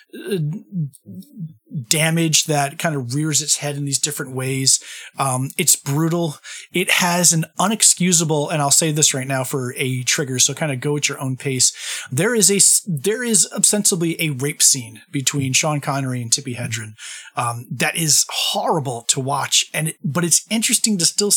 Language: English